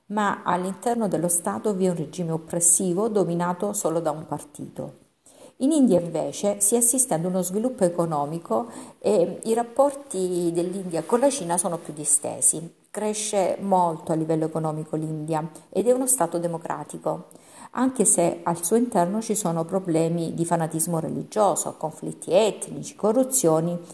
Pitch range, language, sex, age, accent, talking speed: 165-215 Hz, Italian, female, 50-69, native, 145 wpm